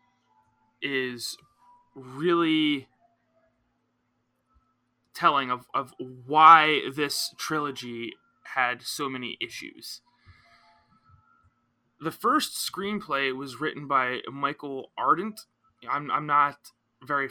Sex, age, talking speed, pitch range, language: male, 20-39, 85 wpm, 130-175 Hz, English